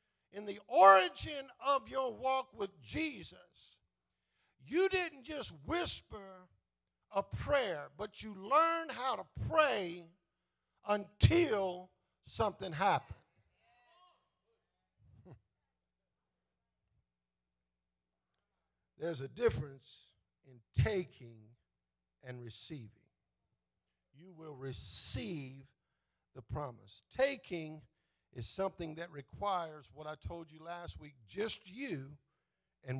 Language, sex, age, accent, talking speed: English, male, 50-69, American, 90 wpm